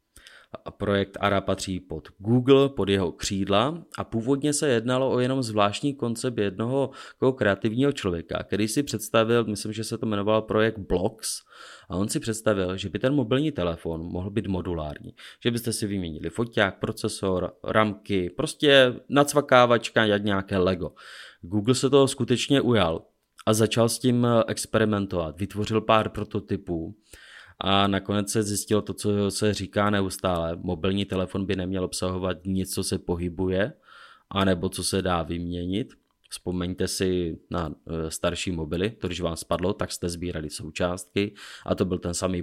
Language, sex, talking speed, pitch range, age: Czech, male, 155 wpm, 90-110 Hz, 30-49